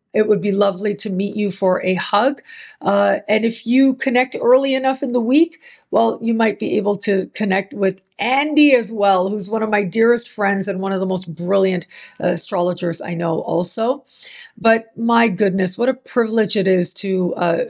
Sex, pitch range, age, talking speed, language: female, 185-230 Hz, 50-69, 195 wpm, English